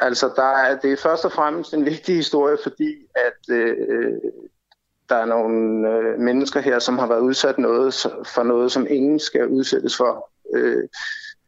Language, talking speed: Danish, 165 wpm